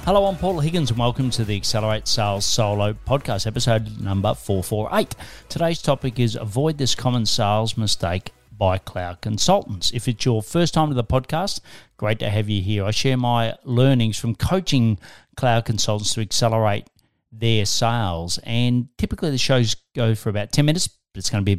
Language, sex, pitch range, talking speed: English, male, 105-130 Hz, 185 wpm